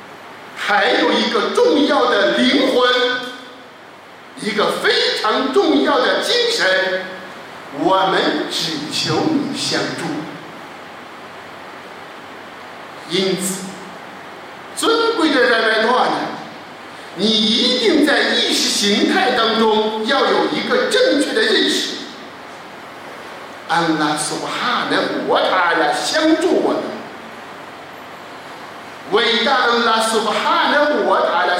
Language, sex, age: Chinese, male, 50-69